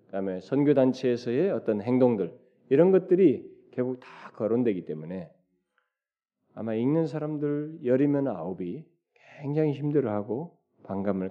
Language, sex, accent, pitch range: Korean, male, native, 110-160 Hz